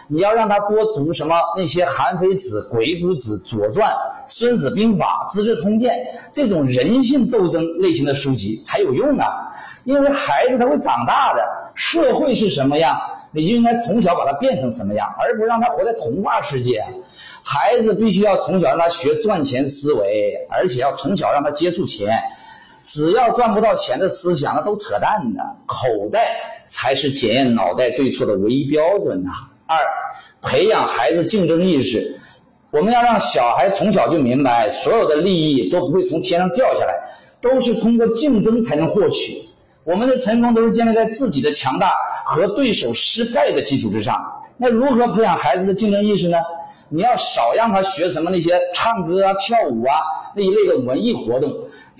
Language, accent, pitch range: Chinese, native, 170-245 Hz